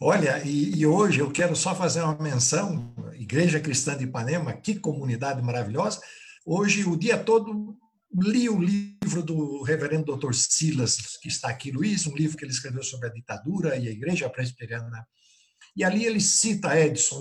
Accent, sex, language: Brazilian, male, Portuguese